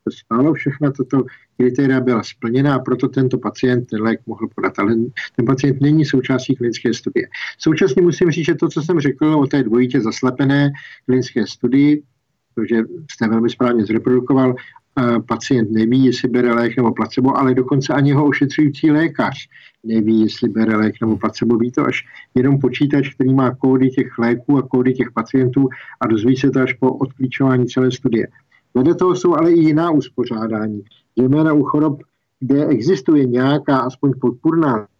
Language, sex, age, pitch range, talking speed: Czech, male, 50-69, 125-140 Hz, 165 wpm